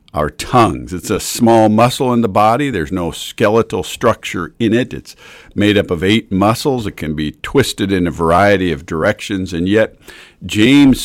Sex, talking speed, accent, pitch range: male, 180 wpm, American, 85-115 Hz